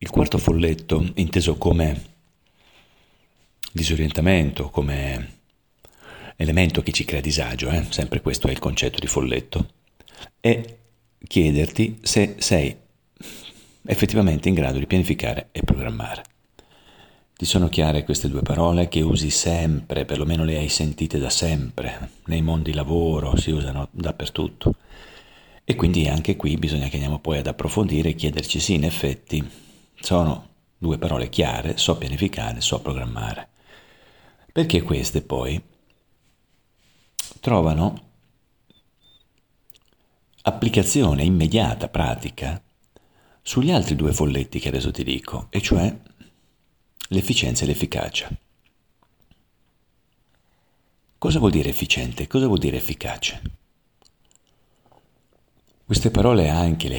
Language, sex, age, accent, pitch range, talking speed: Italian, male, 40-59, native, 75-90 Hz, 115 wpm